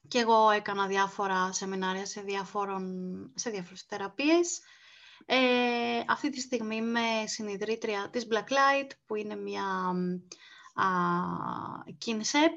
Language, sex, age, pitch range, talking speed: Greek, female, 30-49, 200-270 Hz, 100 wpm